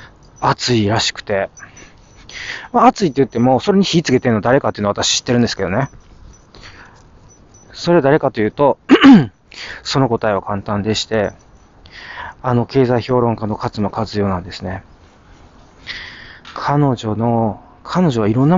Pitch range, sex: 105-140 Hz, male